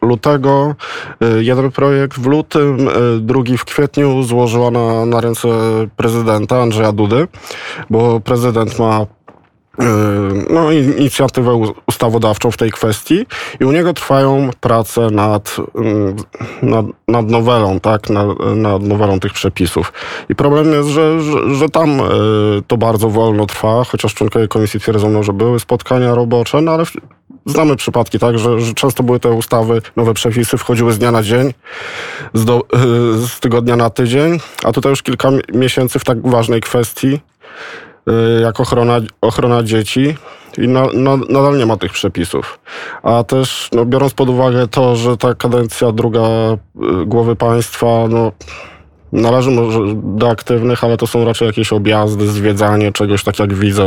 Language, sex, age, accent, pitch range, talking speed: Polish, male, 20-39, native, 110-130 Hz, 145 wpm